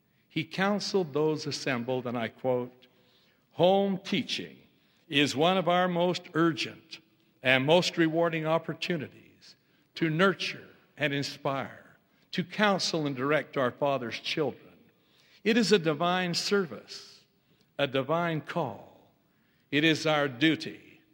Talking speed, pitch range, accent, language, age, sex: 120 wpm, 135-175 Hz, American, English, 60-79, male